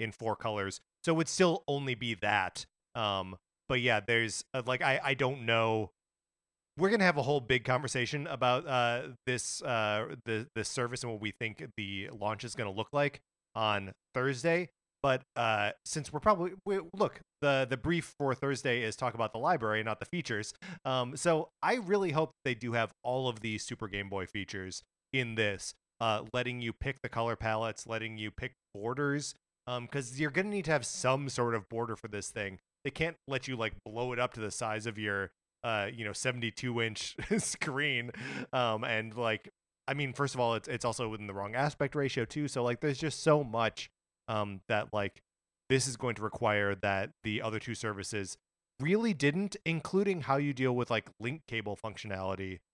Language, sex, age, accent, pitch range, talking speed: English, male, 30-49, American, 110-145 Hz, 195 wpm